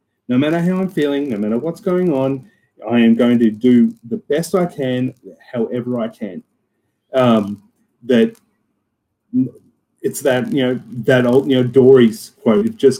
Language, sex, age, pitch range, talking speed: English, male, 30-49, 120-175 Hz, 165 wpm